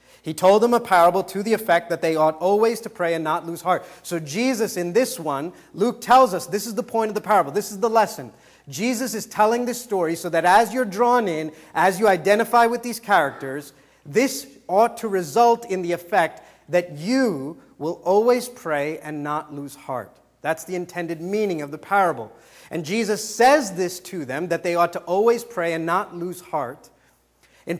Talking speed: 205 wpm